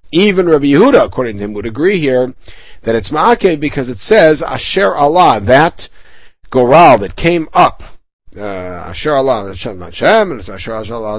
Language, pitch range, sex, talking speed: English, 115-150 Hz, male, 155 wpm